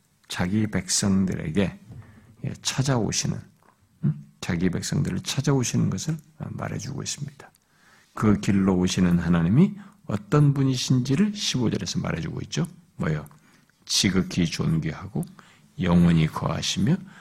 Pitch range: 105-165 Hz